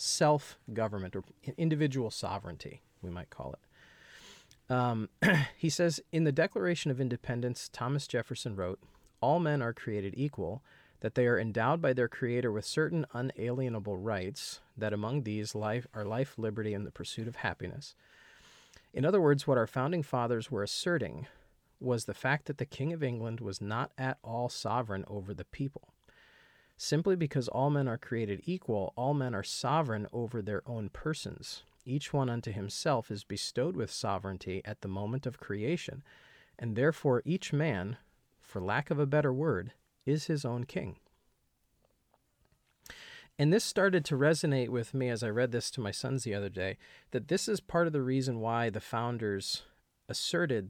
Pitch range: 110-145 Hz